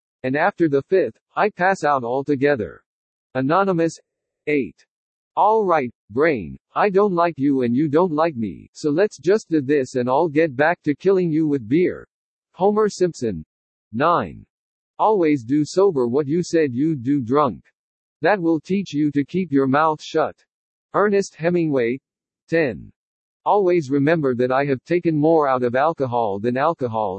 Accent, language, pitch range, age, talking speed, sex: American, English, 130-175 Hz, 50-69, 160 wpm, male